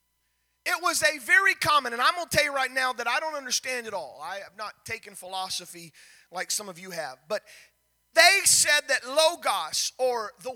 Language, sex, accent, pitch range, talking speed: English, male, American, 215-300 Hz, 200 wpm